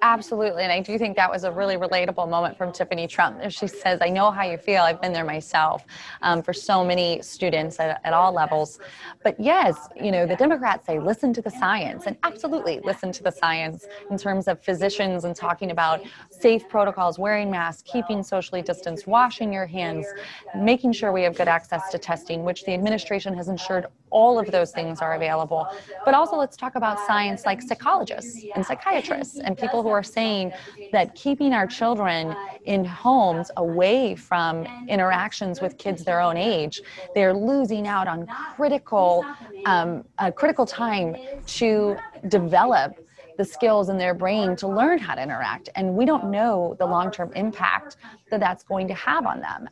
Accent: American